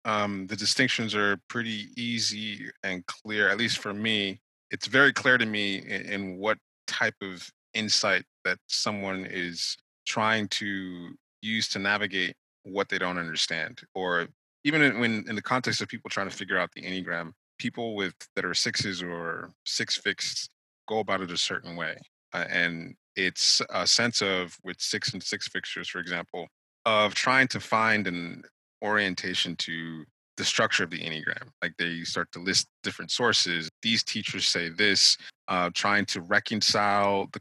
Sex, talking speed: male, 170 wpm